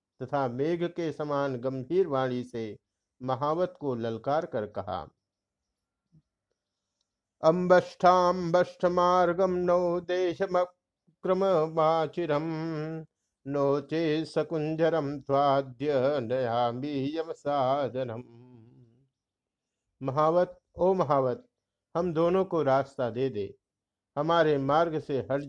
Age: 50-69